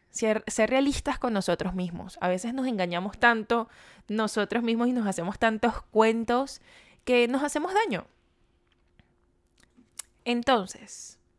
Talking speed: 120 wpm